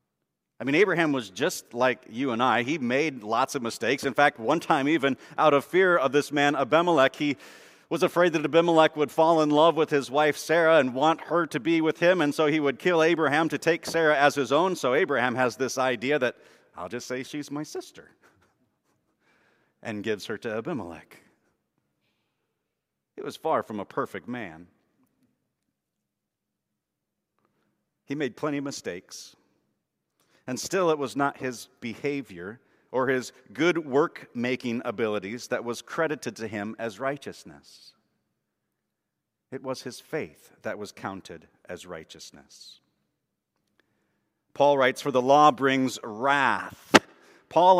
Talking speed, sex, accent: 155 wpm, male, American